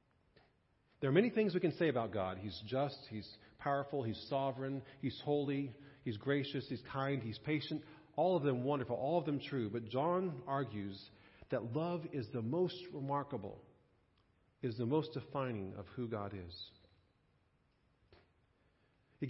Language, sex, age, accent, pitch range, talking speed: English, male, 40-59, American, 115-155 Hz, 150 wpm